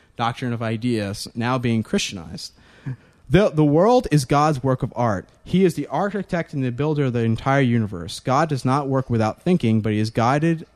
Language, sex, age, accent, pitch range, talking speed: English, male, 30-49, American, 115-150 Hz, 195 wpm